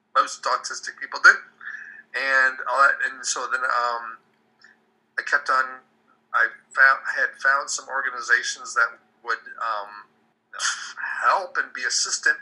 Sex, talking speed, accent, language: male, 125 wpm, American, English